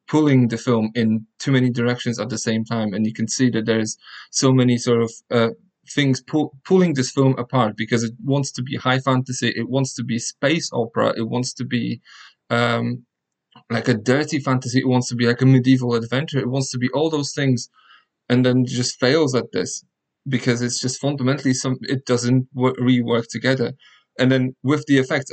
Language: English